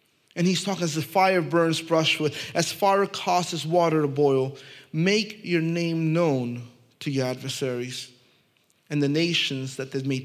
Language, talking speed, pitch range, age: English, 160 wpm, 135-175 Hz, 30-49